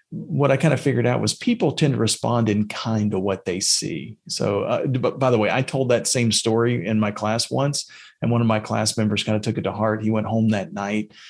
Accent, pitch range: American, 110-160 Hz